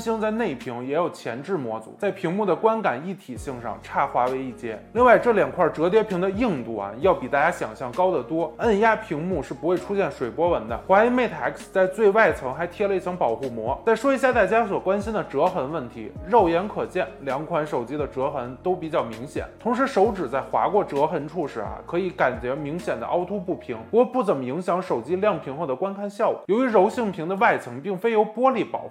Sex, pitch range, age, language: male, 160-215 Hz, 20-39, Chinese